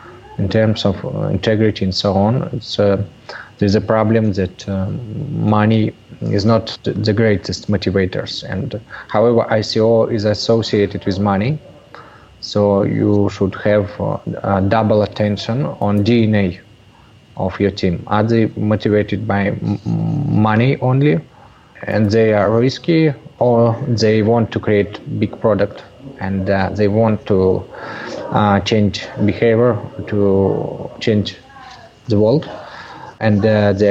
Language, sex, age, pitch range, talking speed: English, male, 20-39, 100-115 Hz, 125 wpm